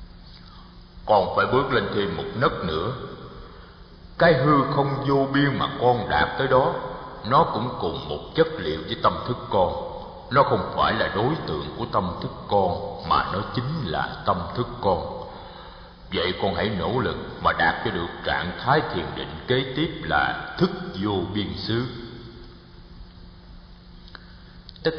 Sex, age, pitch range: male, 60-79, 90-130 Hz